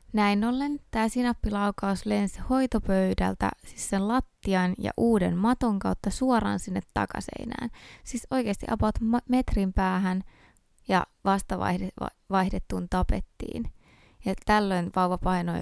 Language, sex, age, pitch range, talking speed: Finnish, female, 20-39, 175-225 Hz, 115 wpm